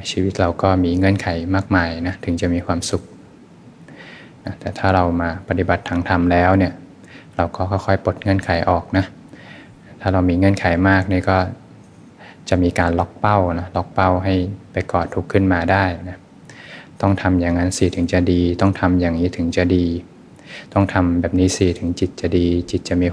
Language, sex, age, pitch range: Thai, male, 20-39, 90-95 Hz